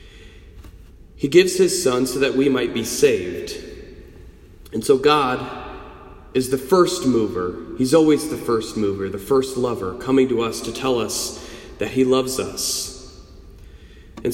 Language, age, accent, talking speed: English, 30-49, American, 150 wpm